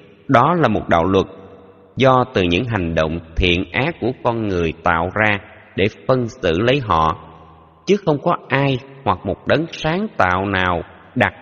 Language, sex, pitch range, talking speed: Vietnamese, male, 80-115 Hz, 175 wpm